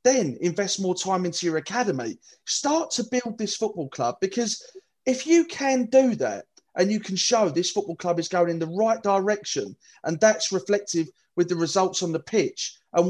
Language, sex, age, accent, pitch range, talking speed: English, male, 30-49, British, 175-225 Hz, 190 wpm